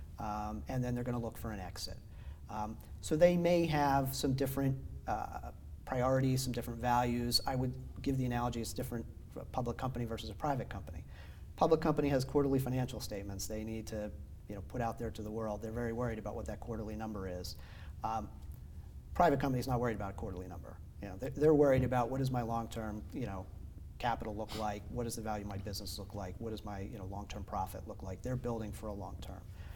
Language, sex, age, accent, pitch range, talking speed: English, male, 40-59, American, 100-125 Hz, 225 wpm